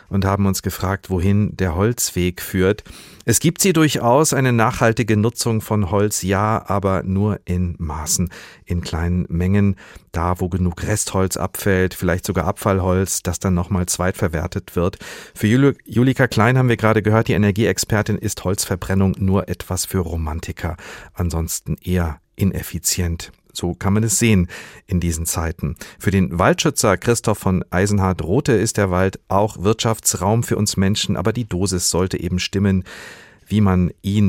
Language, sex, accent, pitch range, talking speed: German, male, German, 90-110 Hz, 155 wpm